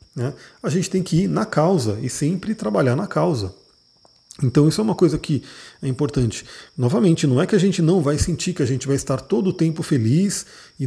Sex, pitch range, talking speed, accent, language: male, 130-175 Hz, 220 wpm, Brazilian, Portuguese